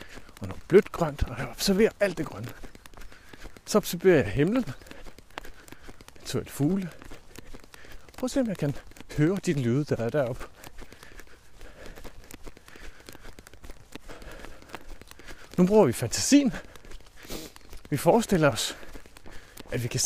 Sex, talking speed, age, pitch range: male, 115 wpm, 60-79, 130-200 Hz